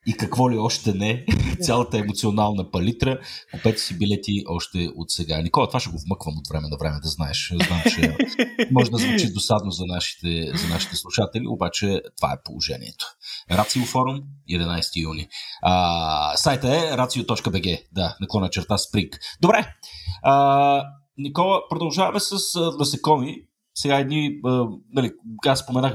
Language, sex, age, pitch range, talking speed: Bulgarian, male, 40-59, 85-120 Hz, 145 wpm